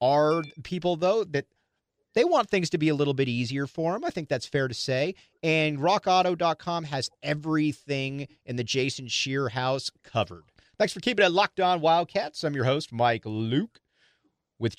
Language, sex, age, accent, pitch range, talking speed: English, male, 40-59, American, 110-150 Hz, 180 wpm